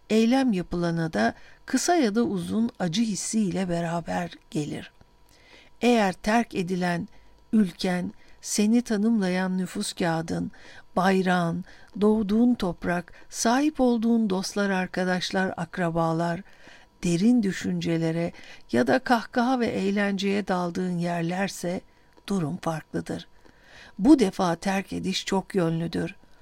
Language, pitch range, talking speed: Turkish, 175-220 Hz, 100 wpm